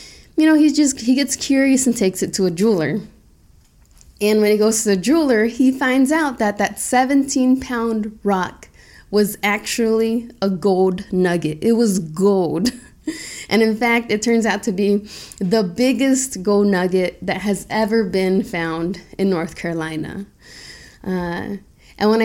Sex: female